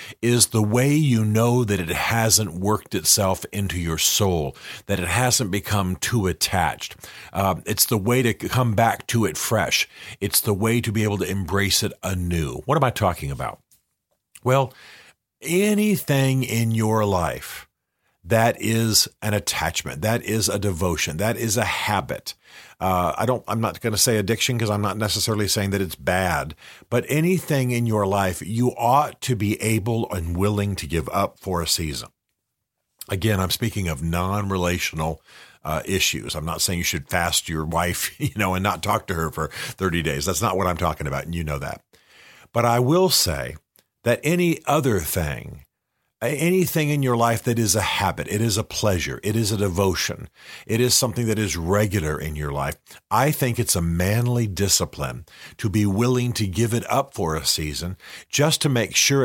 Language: English